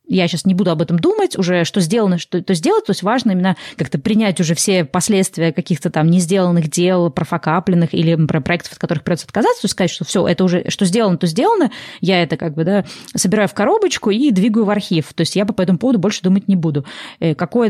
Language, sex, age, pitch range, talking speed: Russian, female, 20-39, 175-210 Hz, 235 wpm